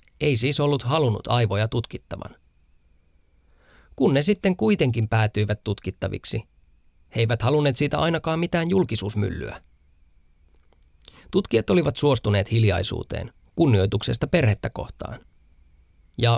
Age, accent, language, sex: 30-49, native, Finnish, male